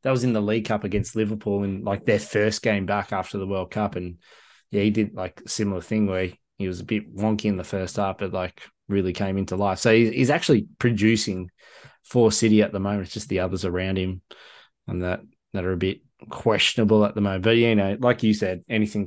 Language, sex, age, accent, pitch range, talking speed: English, male, 20-39, Australian, 100-115 Hz, 235 wpm